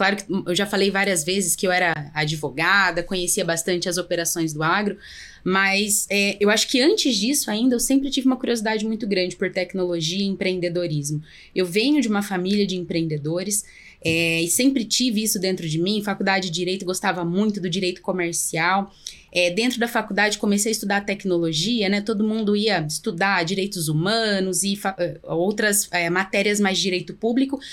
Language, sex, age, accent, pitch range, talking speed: Portuguese, female, 20-39, Brazilian, 185-250 Hz, 175 wpm